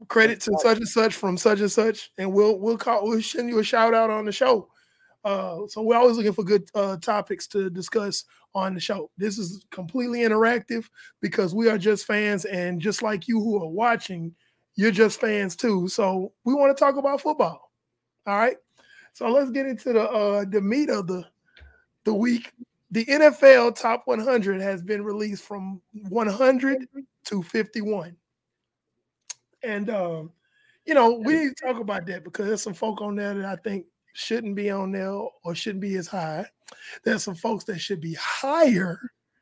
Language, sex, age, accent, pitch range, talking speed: English, male, 20-39, American, 190-235 Hz, 185 wpm